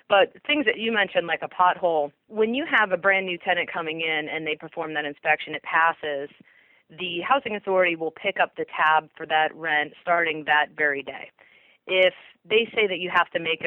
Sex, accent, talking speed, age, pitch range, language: female, American, 205 wpm, 30-49, 155-180 Hz, English